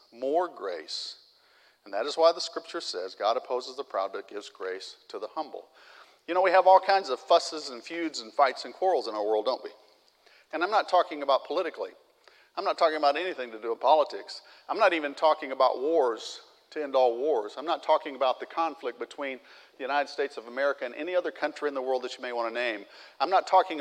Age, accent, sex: 50-69, American, male